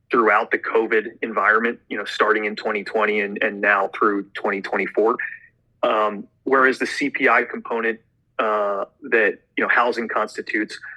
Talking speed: 135 wpm